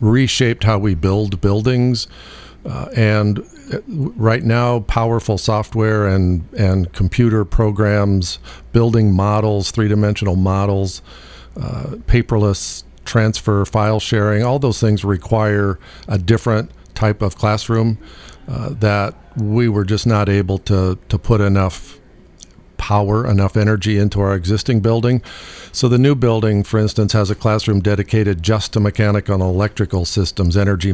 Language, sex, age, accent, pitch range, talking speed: English, male, 50-69, American, 95-110 Hz, 130 wpm